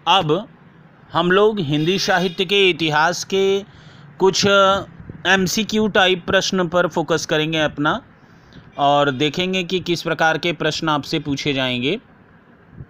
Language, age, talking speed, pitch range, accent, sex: Hindi, 40-59, 125 wpm, 155-200 Hz, native, male